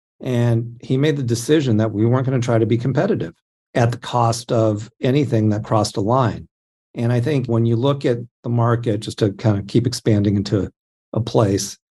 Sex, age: male, 50-69